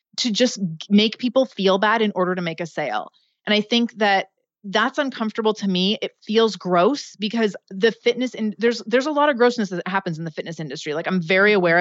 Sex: female